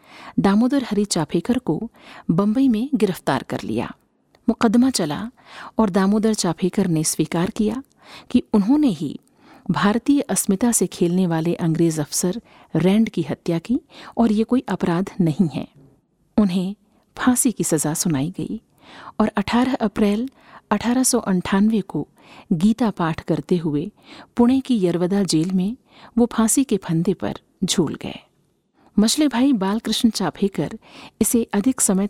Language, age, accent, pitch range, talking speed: Hindi, 50-69, native, 185-245 Hz, 135 wpm